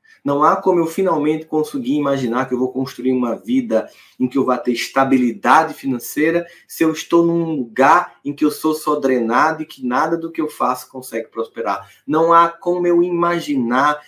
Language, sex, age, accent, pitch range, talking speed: Portuguese, male, 20-39, Brazilian, 135-180 Hz, 190 wpm